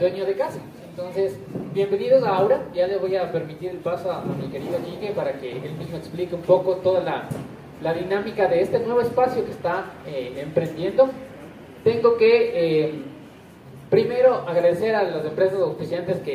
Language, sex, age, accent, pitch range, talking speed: Spanish, male, 30-49, Mexican, 165-210 Hz, 175 wpm